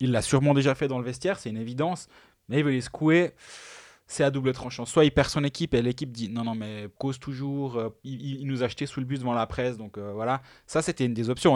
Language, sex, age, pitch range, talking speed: French, male, 20-39, 115-145 Hz, 280 wpm